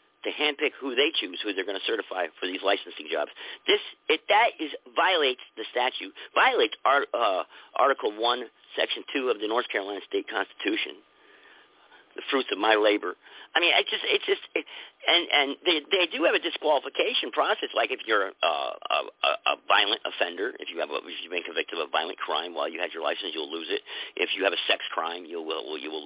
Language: English